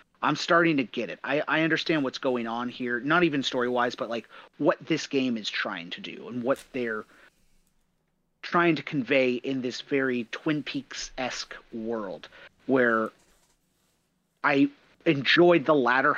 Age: 30-49